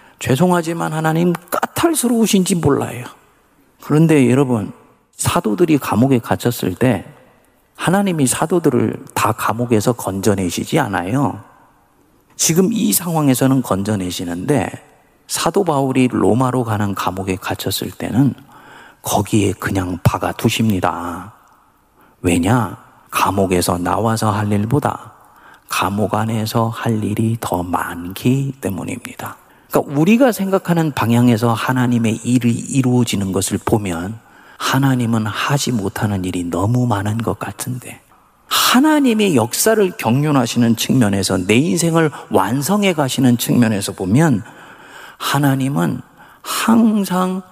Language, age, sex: Korean, 40-59, male